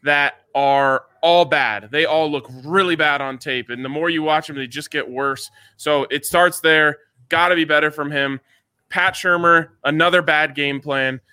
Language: English